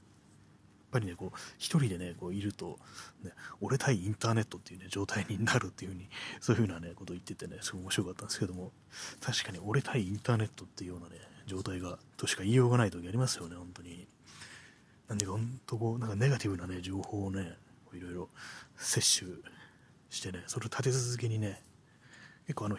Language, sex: Japanese, male